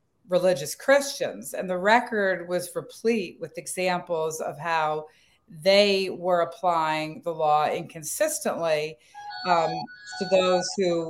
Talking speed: 115 wpm